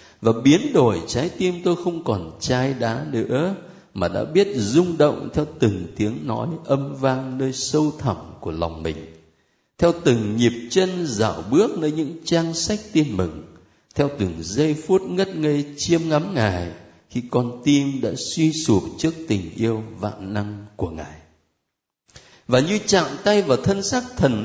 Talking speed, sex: 170 wpm, male